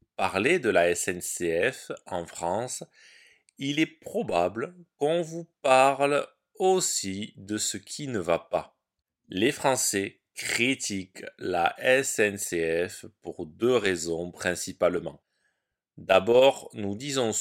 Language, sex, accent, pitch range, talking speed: French, male, French, 100-145 Hz, 105 wpm